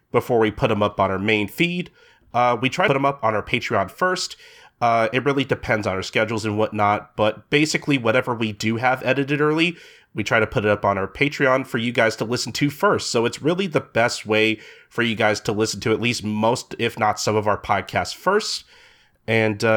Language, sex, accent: English, male, American